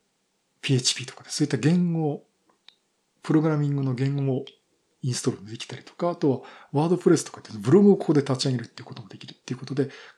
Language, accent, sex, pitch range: Japanese, native, male, 130-170 Hz